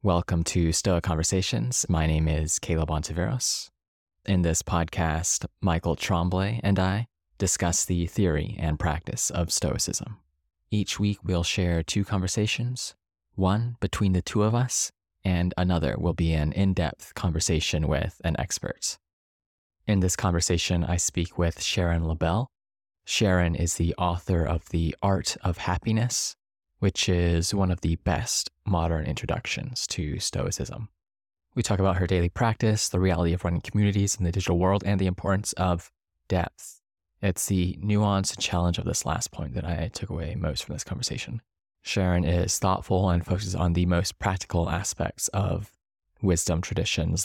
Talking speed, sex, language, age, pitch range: 155 wpm, male, English, 20-39, 85-100 Hz